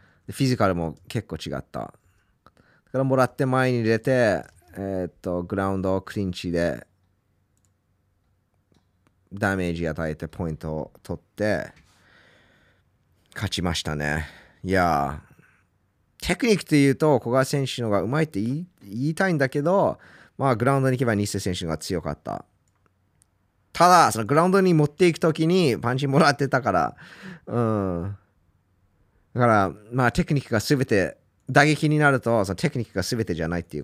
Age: 20-39